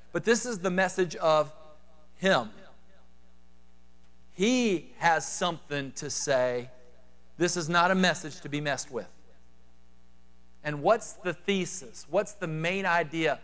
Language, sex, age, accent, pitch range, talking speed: English, male, 40-59, American, 105-170 Hz, 130 wpm